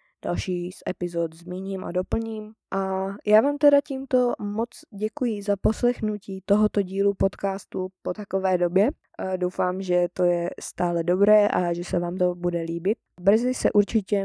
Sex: female